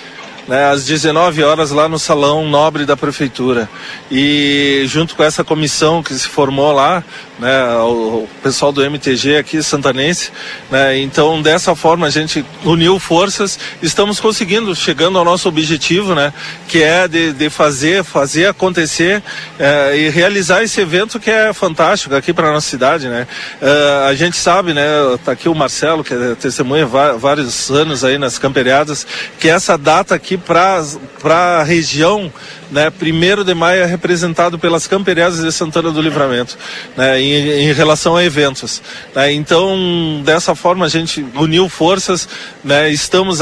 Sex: male